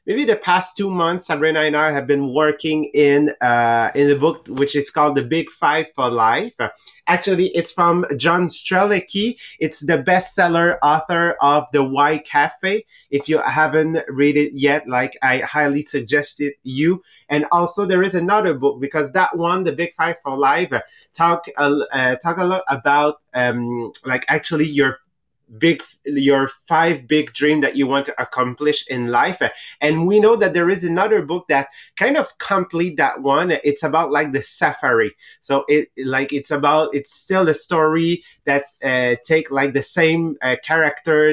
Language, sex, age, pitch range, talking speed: English, male, 30-49, 140-170 Hz, 175 wpm